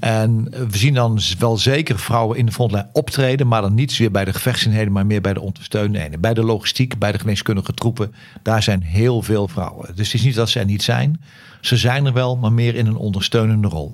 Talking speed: 235 wpm